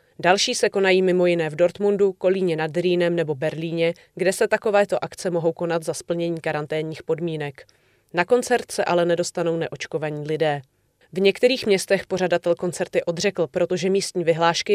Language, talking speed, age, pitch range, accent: Czech, 155 wpm, 30-49, 165-190 Hz, native